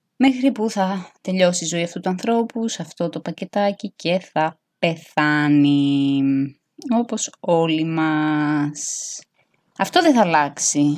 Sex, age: female, 20-39